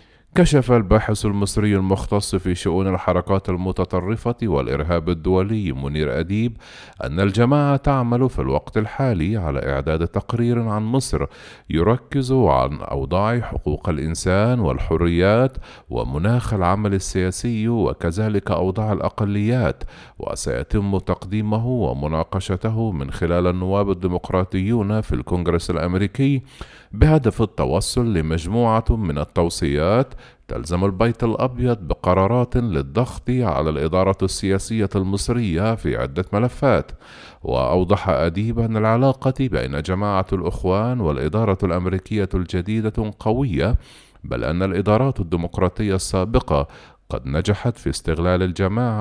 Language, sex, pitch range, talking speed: Arabic, male, 85-115 Hz, 100 wpm